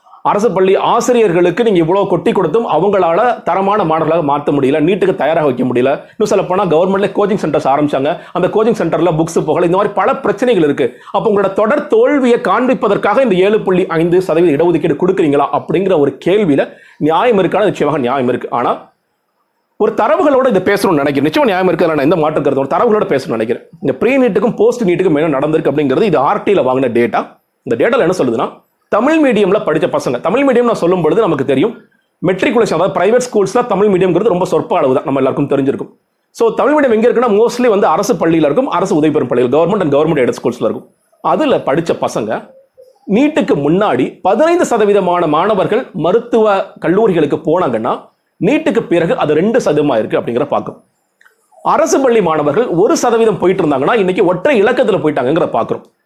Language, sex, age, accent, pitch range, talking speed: Tamil, male, 40-59, native, 170-245 Hz, 65 wpm